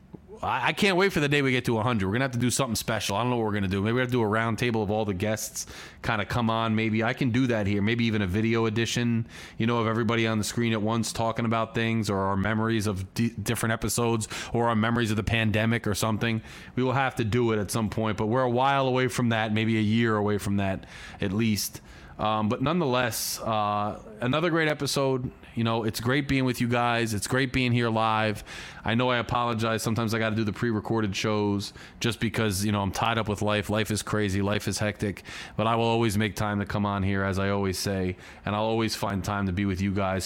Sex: male